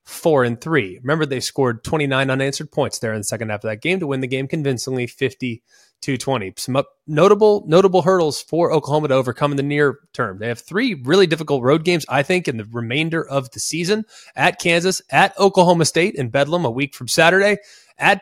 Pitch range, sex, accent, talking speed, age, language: 130-180 Hz, male, American, 205 wpm, 20-39, English